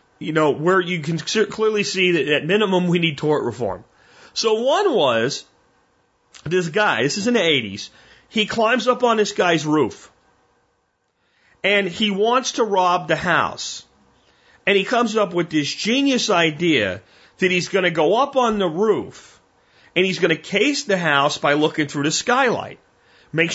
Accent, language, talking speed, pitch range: American, English, 175 wpm, 160-220 Hz